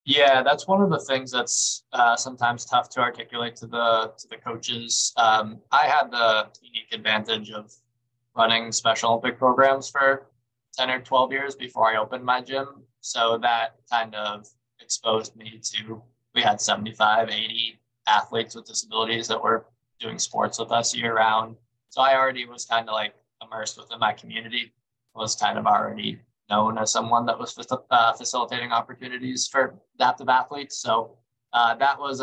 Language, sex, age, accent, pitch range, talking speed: English, male, 20-39, American, 110-125 Hz, 170 wpm